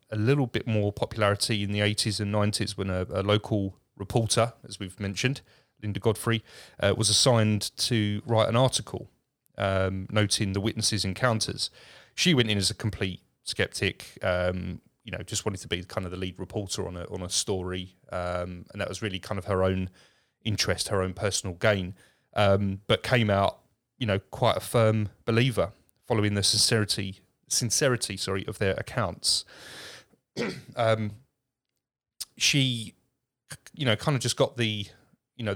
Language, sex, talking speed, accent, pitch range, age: English, male, 165 wpm, British, 95-115 Hz, 30-49